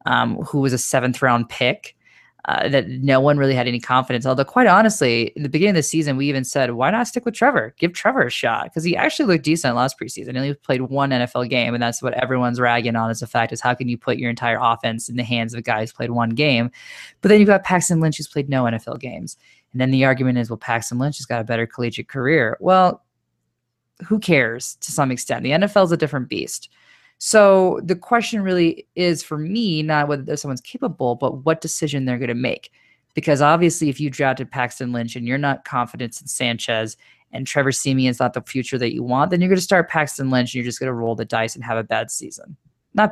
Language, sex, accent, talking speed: English, female, American, 245 wpm